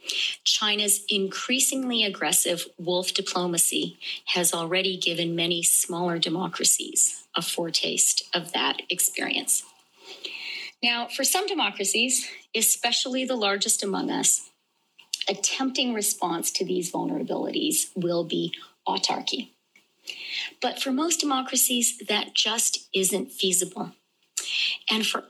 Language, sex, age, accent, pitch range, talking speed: English, female, 40-59, American, 180-240 Hz, 105 wpm